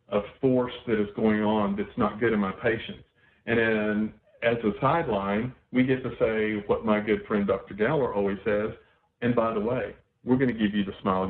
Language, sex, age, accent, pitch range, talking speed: English, male, 50-69, American, 105-125 Hz, 210 wpm